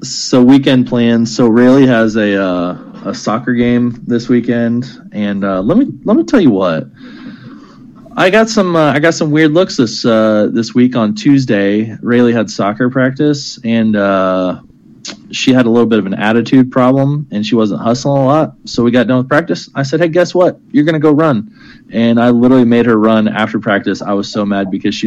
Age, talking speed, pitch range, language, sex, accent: 20-39, 210 wpm, 105-135 Hz, English, male, American